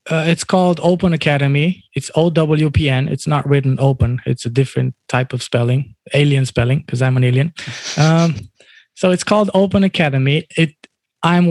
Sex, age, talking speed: male, 20-39, 160 wpm